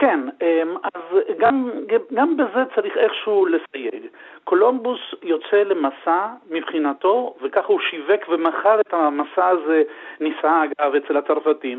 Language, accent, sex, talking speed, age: Hebrew, native, male, 115 wpm, 50-69